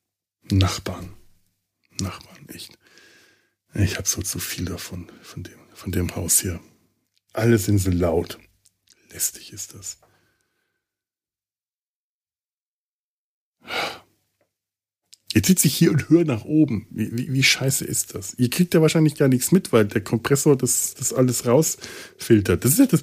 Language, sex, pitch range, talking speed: German, male, 95-145 Hz, 145 wpm